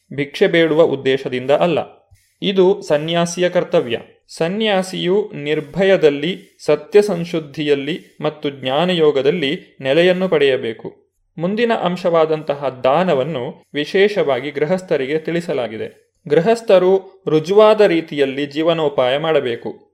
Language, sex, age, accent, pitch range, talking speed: Kannada, male, 30-49, native, 150-195 Hz, 80 wpm